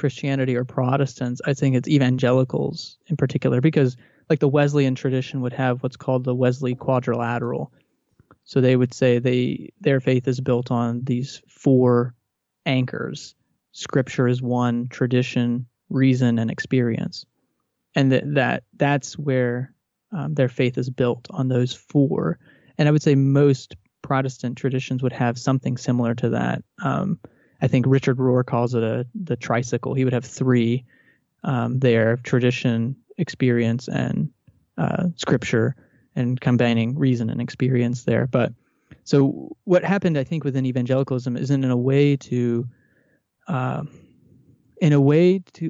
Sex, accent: male, American